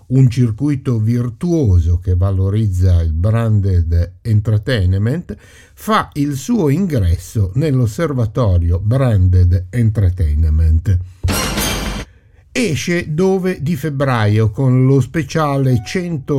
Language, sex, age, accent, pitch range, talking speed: Italian, male, 50-69, native, 95-130 Hz, 85 wpm